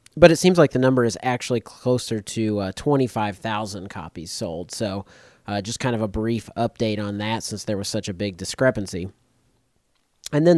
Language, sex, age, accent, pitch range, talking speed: English, male, 30-49, American, 105-125 Hz, 185 wpm